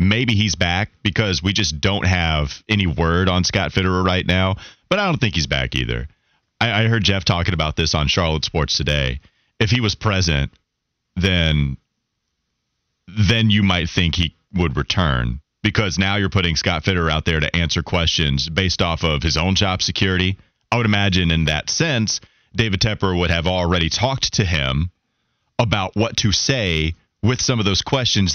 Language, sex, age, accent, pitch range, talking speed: English, male, 30-49, American, 80-105 Hz, 180 wpm